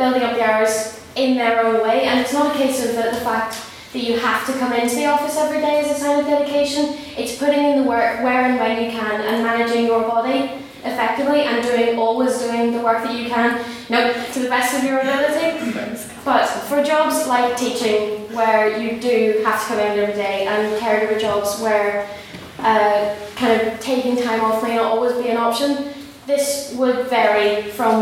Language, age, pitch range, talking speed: English, 10-29, 220-255 Hz, 210 wpm